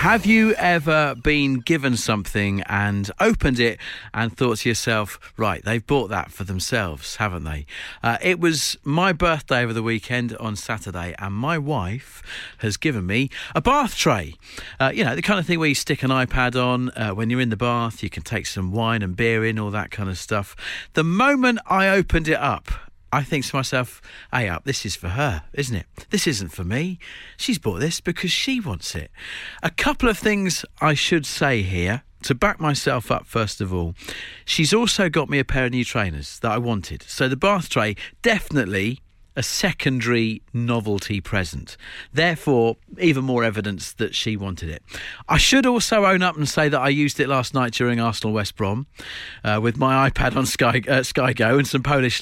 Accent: British